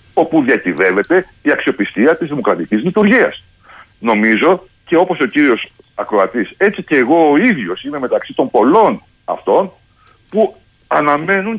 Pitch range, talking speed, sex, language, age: 155-230 Hz, 130 wpm, male, Greek, 60-79